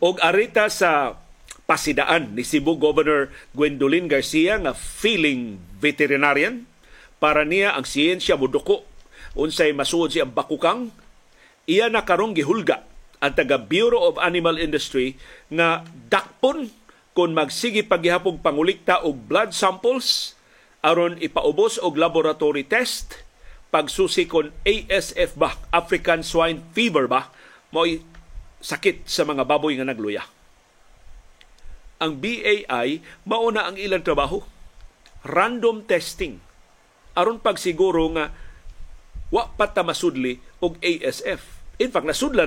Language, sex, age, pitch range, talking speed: Filipino, male, 50-69, 150-220 Hz, 115 wpm